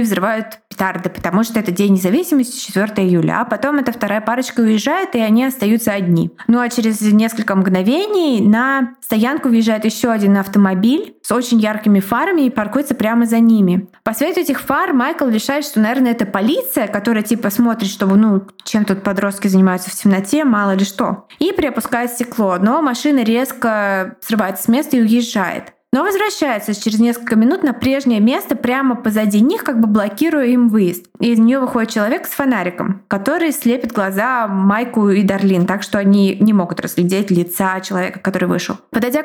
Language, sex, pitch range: Russian, female, 205-255 Hz